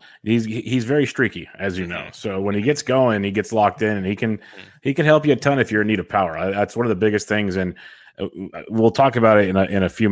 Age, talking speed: 30-49, 280 wpm